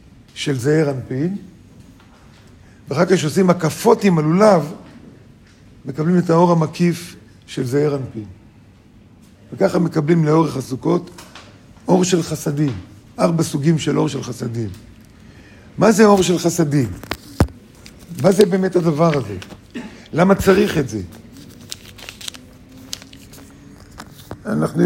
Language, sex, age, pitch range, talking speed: Hebrew, male, 50-69, 115-175 Hz, 105 wpm